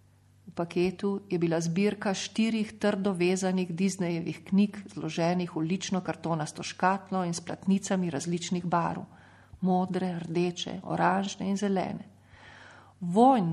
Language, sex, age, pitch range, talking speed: Italian, female, 40-59, 170-200 Hz, 110 wpm